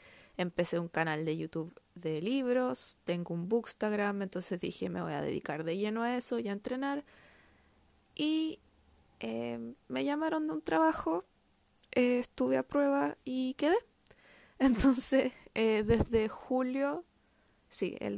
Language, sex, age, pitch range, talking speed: Spanish, female, 20-39, 190-245 Hz, 140 wpm